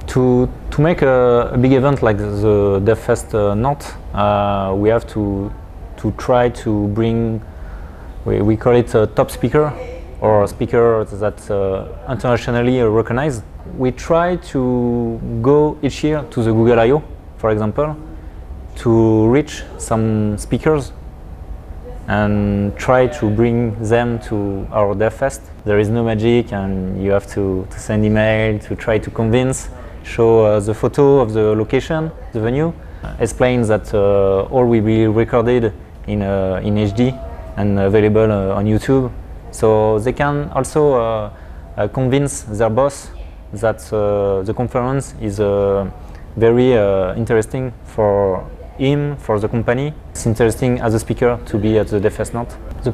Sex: male